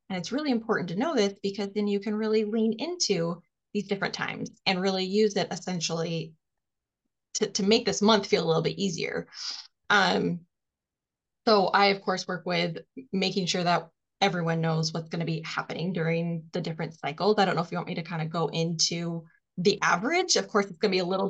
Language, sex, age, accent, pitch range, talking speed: English, female, 10-29, American, 175-215 Hz, 210 wpm